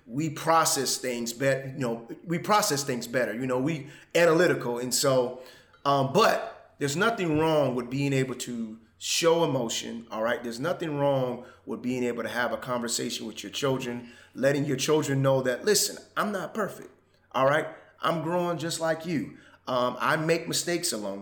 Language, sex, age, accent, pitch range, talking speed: English, male, 30-49, American, 125-170 Hz, 180 wpm